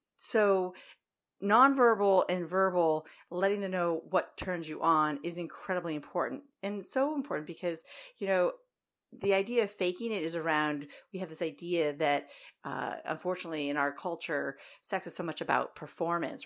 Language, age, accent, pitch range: English, 40-59, American, 160-200 Hz